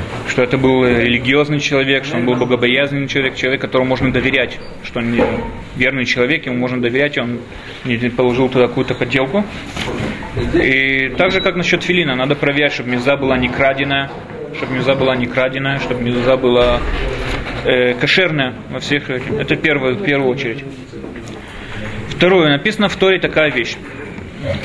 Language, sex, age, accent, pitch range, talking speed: Russian, male, 20-39, native, 125-155 Hz, 155 wpm